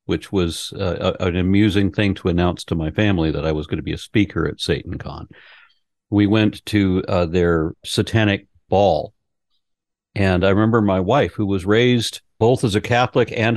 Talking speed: 180 wpm